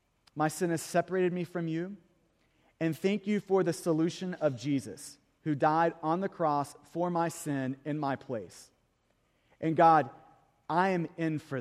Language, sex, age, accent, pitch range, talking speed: English, male, 30-49, American, 165-210 Hz, 165 wpm